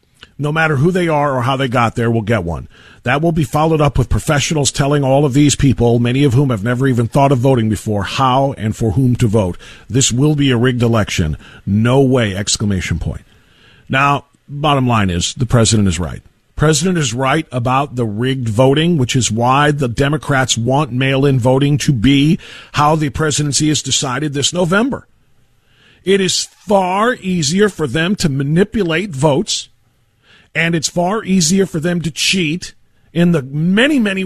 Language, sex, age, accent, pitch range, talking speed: English, male, 50-69, American, 125-180 Hz, 185 wpm